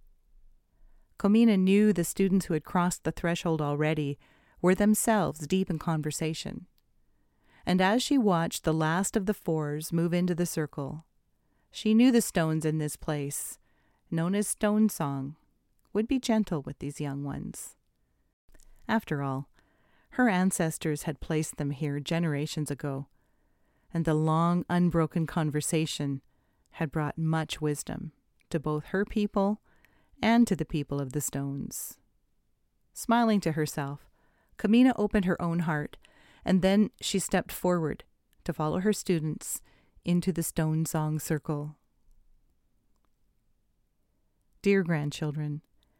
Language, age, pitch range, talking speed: English, 40-59, 150-200 Hz, 130 wpm